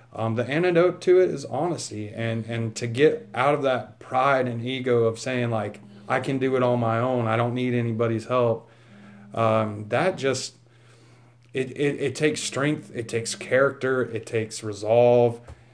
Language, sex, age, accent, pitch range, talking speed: English, male, 30-49, American, 115-130 Hz, 175 wpm